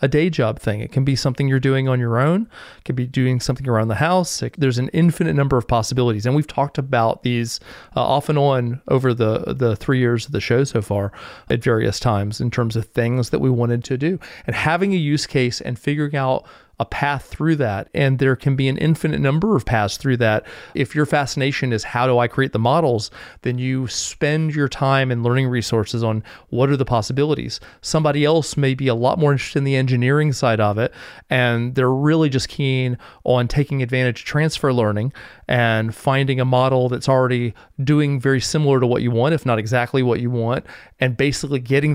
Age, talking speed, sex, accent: 30-49, 215 wpm, male, American